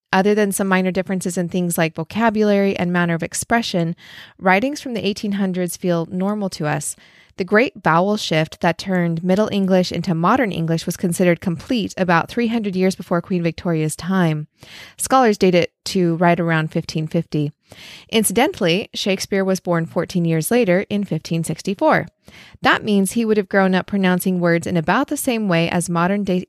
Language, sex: English, female